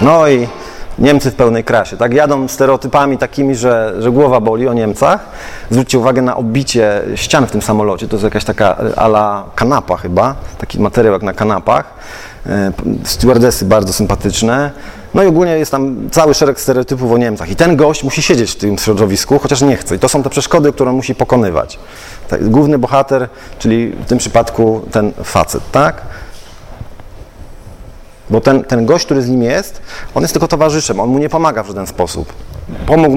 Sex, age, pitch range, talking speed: male, 40-59, 110-150 Hz, 180 wpm